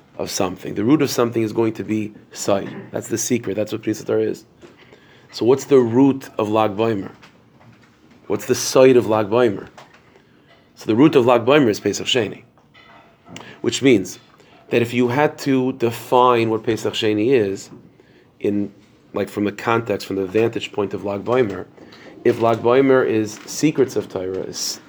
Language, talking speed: English, 165 wpm